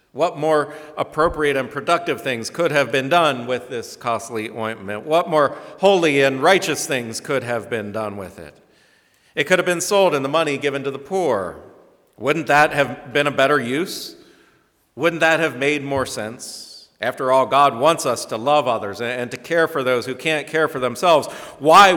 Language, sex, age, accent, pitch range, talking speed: English, male, 50-69, American, 115-150 Hz, 190 wpm